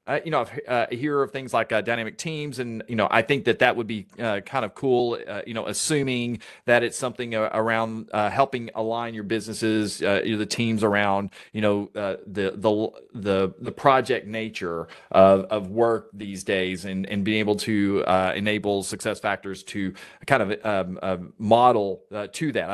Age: 30-49